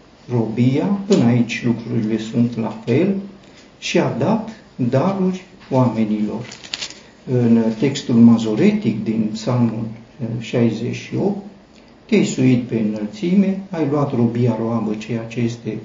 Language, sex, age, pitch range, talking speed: Romanian, male, 50-69, 115-150 Hz, 105 wpm